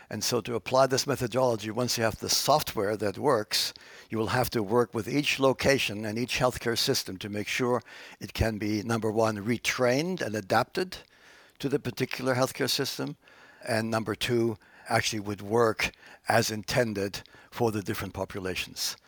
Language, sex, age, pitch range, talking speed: English, male, 60-79, 105-125 Hz, 165 wpm